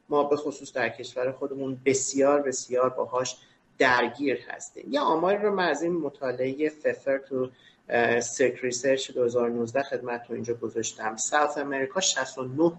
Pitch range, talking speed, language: 135-180 Hz, 145 wpm, Persian